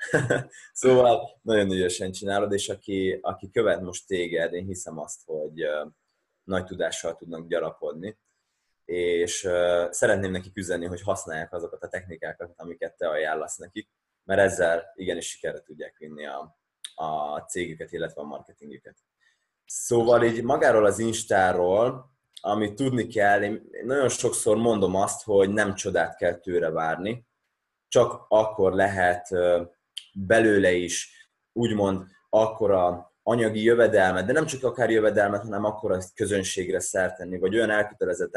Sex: male